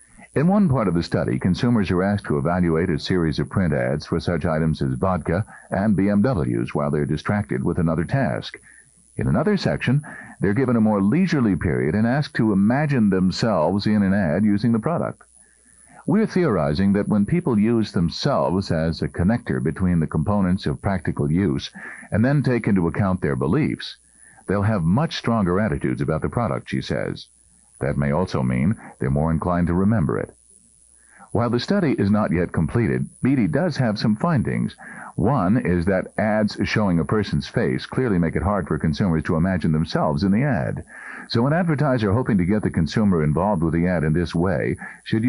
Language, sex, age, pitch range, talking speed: English, male, 50-69, 85-115 Hz, 185 wpm